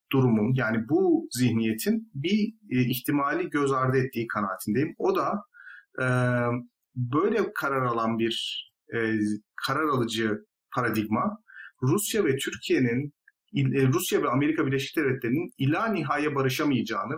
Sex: male